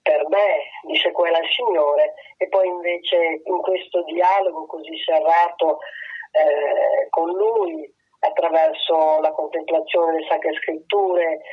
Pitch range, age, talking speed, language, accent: 170-270 Hz, 30-49, 120 wpm, Italian, native